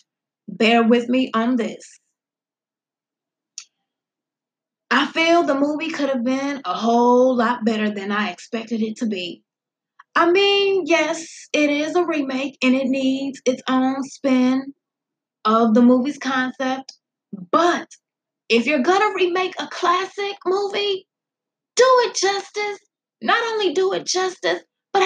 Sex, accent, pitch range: female, American, 220-320 Hz